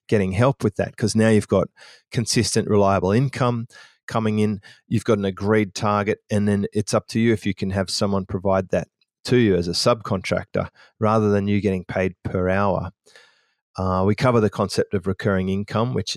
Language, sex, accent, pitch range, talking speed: English, male, Australian, 100-115 Hz, 195 wpm